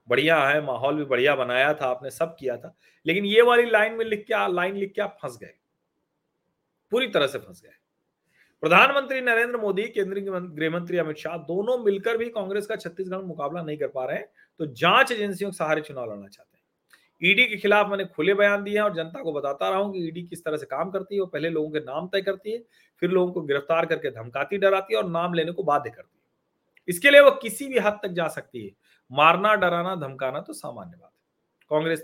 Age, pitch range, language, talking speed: 40-59, 140-200 Hz, Hindi, 225 wpm